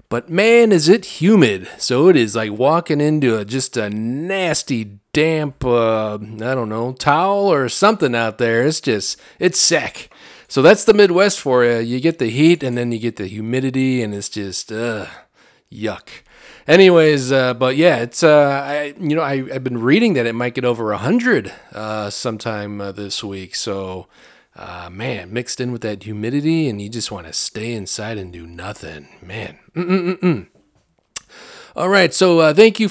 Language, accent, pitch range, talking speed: English, American, 115-165 Hz, 180 wpm